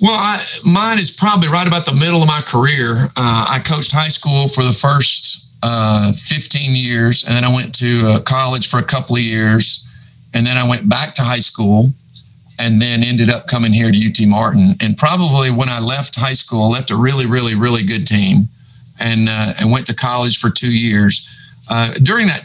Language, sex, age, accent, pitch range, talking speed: English, male, 50-69, American, 115-140 Hz, 210 wpm